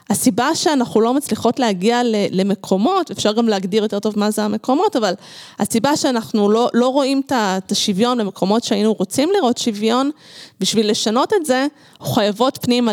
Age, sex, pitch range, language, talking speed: 20-39, female, 200-255 Hz, Hebrew, 155 wpm